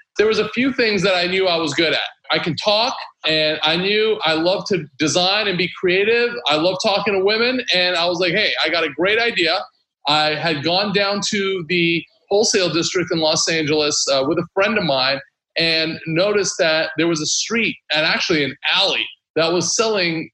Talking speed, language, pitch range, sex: 210 wpm, English, 160-210 Hz, male